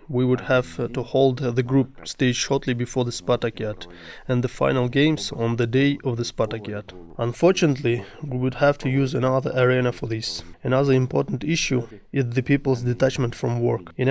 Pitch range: 120-135 Hz